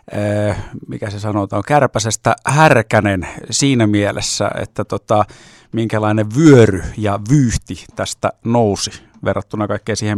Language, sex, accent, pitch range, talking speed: Finnish, male, native, 105-120 Hz, 110 wpm